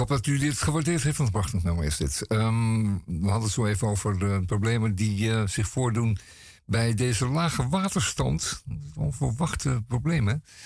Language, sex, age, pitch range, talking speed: Dutch, male, 50-69, 95-120 Hz, 170 wpm